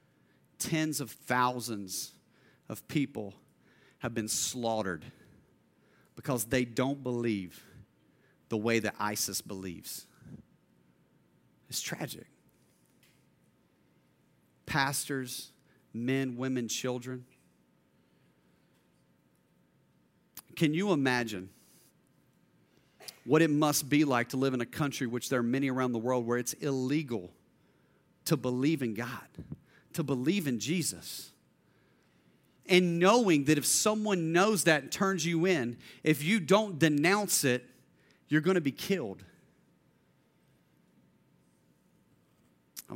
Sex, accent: male, American